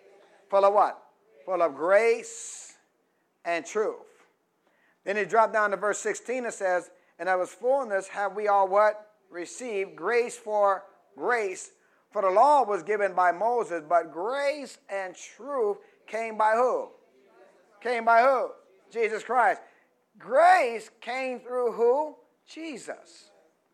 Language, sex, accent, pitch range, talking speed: English, male, American, 210-315 Hz, 135 wpm